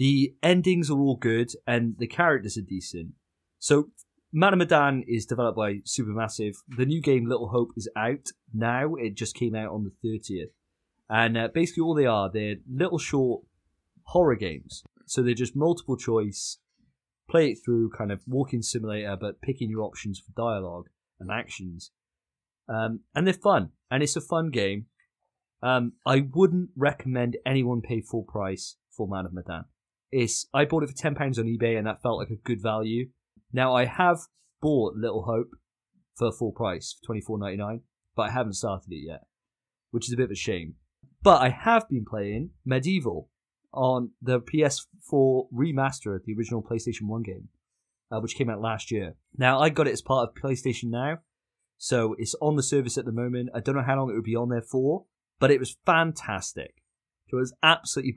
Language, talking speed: English, 190 wpm